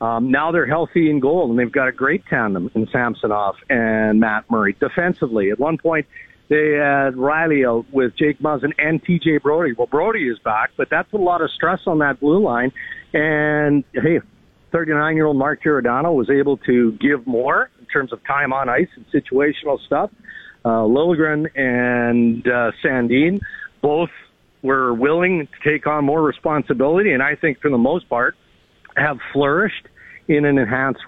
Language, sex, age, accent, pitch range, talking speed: English, male, 50-69, American, 125-160 Hz, 170 wpm